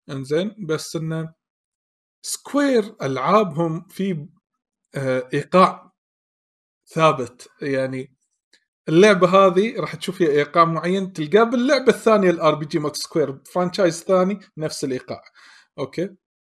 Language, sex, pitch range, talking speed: Arabic, male, 140-185 Hz, 105 wpm